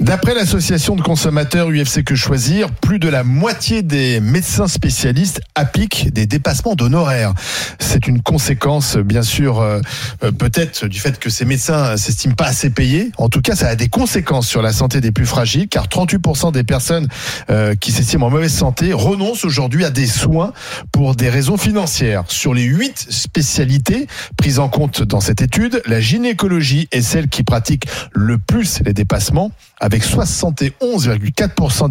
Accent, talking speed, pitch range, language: French, 165 wpm, 120-160 Hz, French